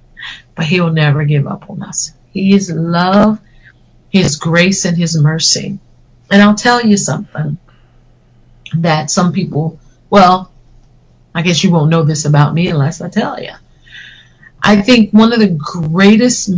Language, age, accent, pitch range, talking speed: English, 40-59, American, 145-195 Hz, 150 wpm